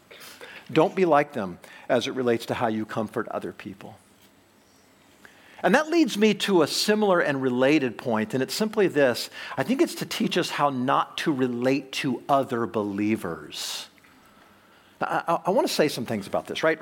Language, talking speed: English, 180 wpm